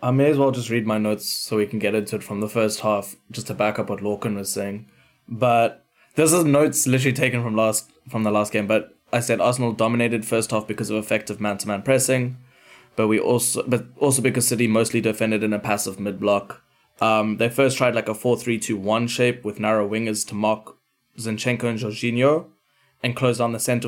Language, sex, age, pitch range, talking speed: English, male, 20-39, 110-120 Hz, 215 wpm